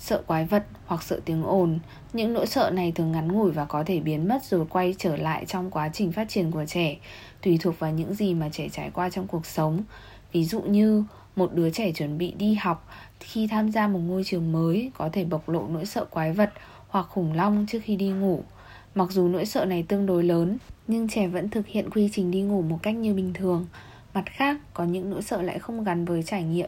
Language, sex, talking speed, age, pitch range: Vietnamese, female, 245 wpm, 20-39, 165-210 Hz